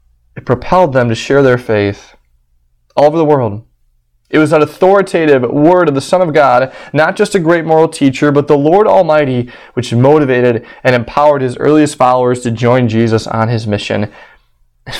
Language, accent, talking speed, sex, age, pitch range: English, American, 180 wpm, male, 20-39, 105-145 Hz